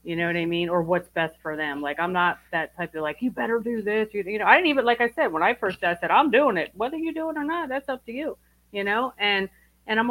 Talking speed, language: 310 wpm, English